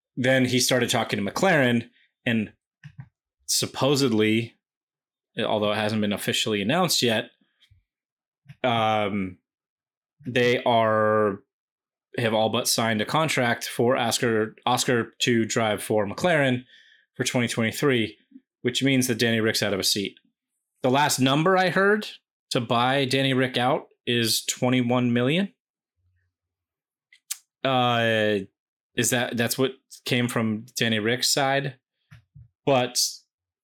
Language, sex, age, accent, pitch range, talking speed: English, male, 20-39, American, 110-140 Hz, 120 wpm